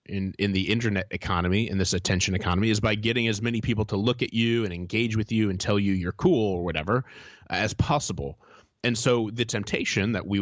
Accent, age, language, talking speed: American, 30-49, English, 225 wpm